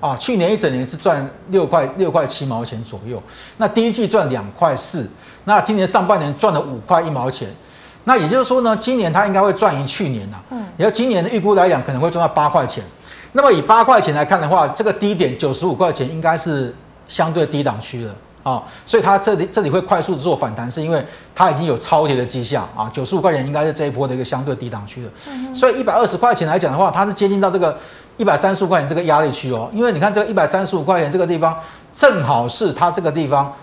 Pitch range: 135-205 Hz